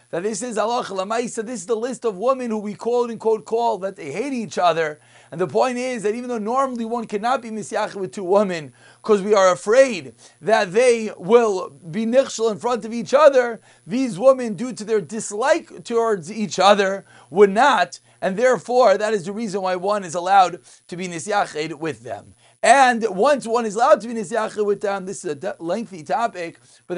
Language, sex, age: English, male, 30-49